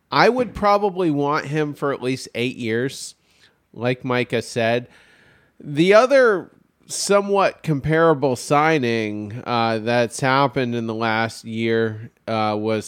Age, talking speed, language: 40-59, 125 wpm, English